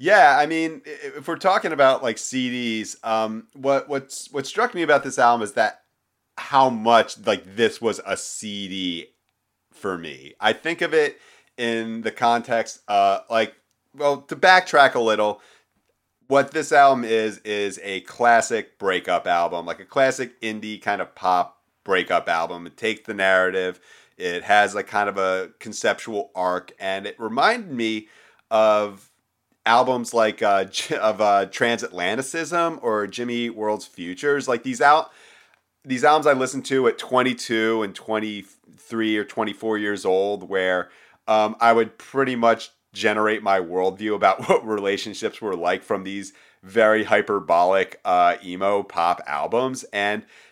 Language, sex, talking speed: English, male, 155 wpm